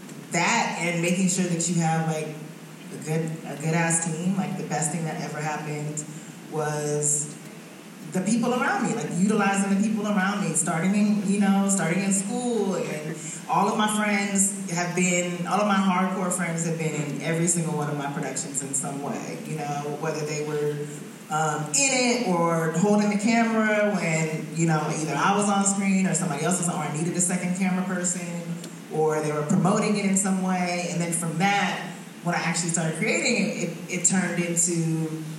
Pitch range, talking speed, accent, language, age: 160-195 Hz, 200 wpm, American, English, 20-39